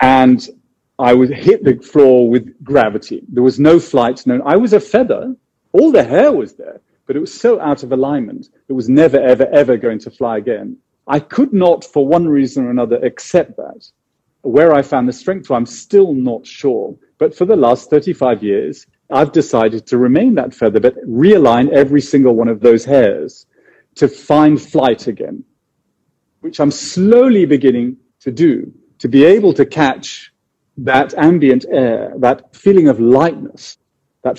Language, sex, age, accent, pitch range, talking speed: English, male, 40-59, British, 125-175 Hz, 175 wpm